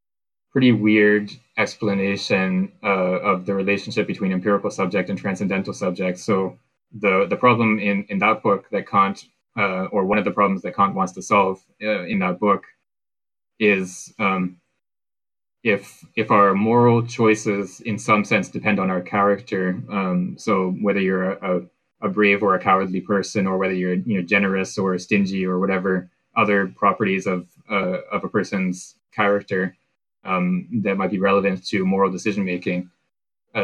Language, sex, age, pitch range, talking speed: English, male, 20-39, 95-110 Hz, 160 wpm